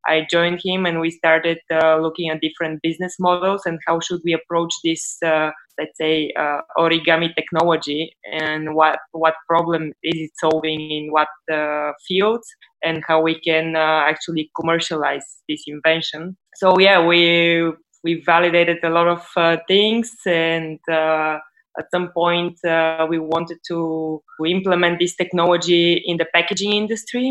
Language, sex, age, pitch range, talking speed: English, female, 20-39, 160-180 Hz, 155 wpm